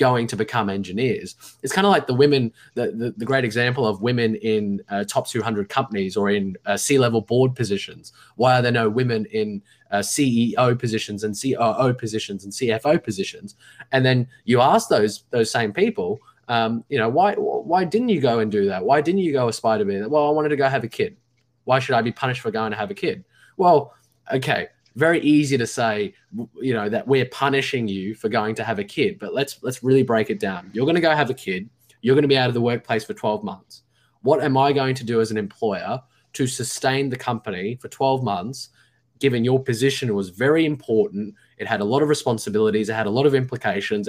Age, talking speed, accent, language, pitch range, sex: 20-39, 225 wpm, Australian, English, 110-135 Hz, male